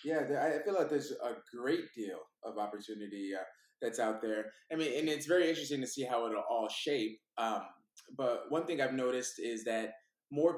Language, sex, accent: English, male, American